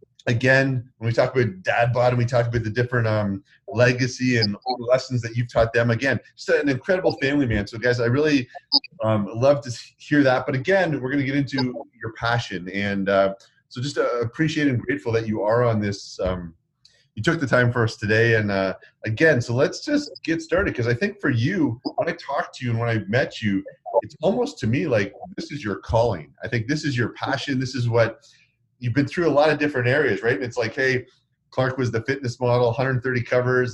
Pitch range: 115-145 Hz